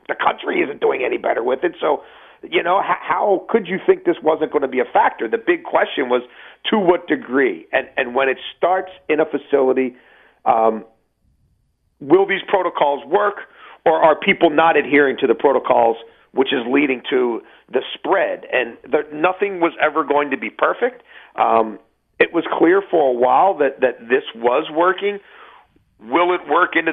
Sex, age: male, 40-59